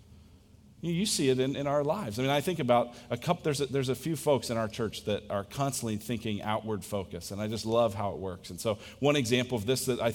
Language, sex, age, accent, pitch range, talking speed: English, male, 40-59, American, 115-145 Hz, 260 wpm